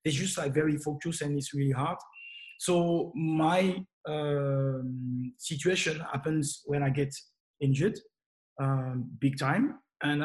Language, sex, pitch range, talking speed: English, male, 140-155 Hz, 130 wpm